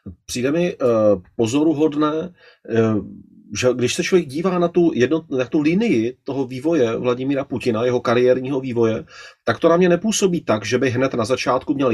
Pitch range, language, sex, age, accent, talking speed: 125-165 Hz, Czech, male, 30-49, native, 155 wpm